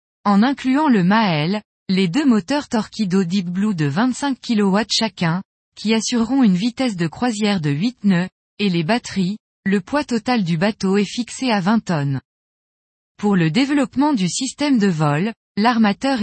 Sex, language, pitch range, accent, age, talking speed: female, French, 185-245 Hz, French, 20-39, 165 wpm